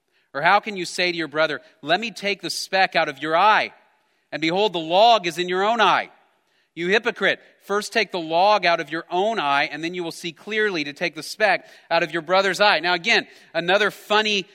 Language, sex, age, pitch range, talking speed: English, male, 40-59, 175-230 Hz, 230 wpm